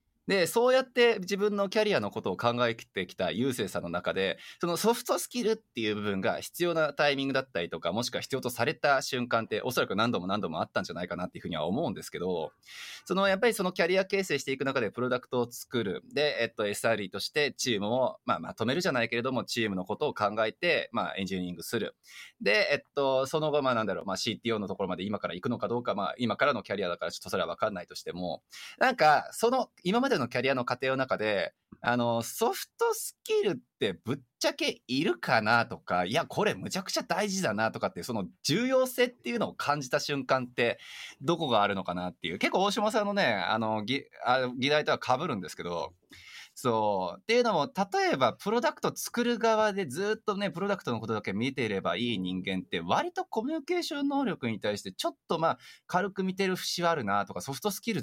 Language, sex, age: Japanese, male, 20-39